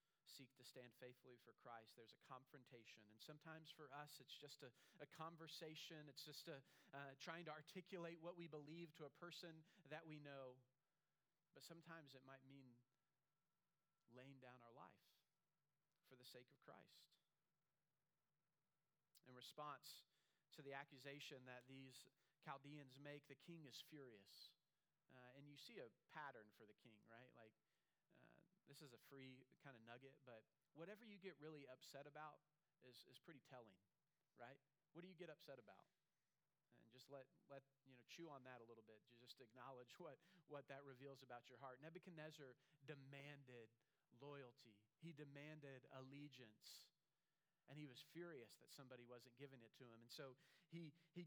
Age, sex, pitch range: 40-59, male, 130-160 Hz